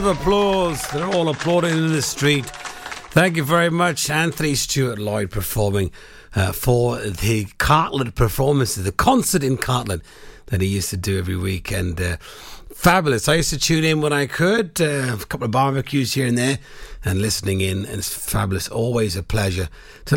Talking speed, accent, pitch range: 175 wpm, British, 100-145 Hz